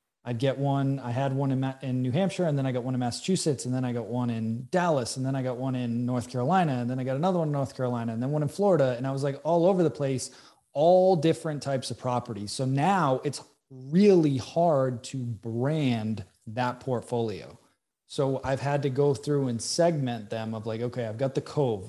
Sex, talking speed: male, 235 wpm